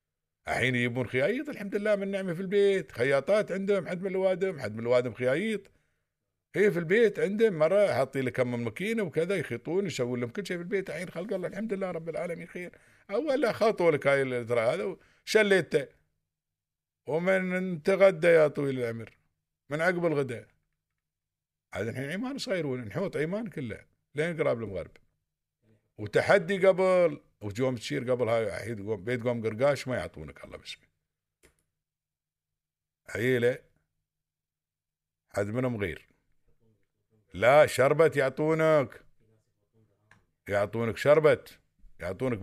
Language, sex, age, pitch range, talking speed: Arabic, male, 50-69, 110-170 Hz, 125 wpm